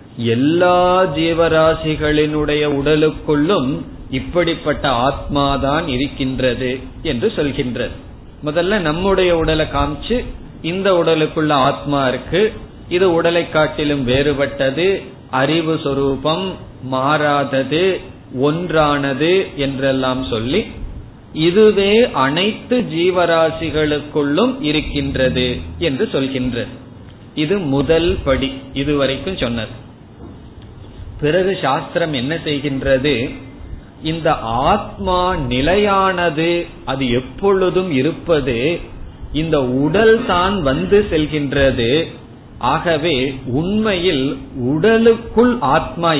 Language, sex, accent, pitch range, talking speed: Tamil, male, native, 135-170 Hz, 75 wpm